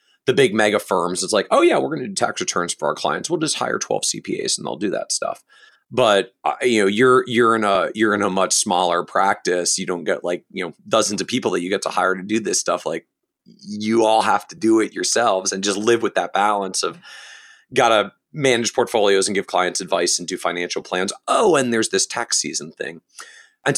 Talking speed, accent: 230 wpm, American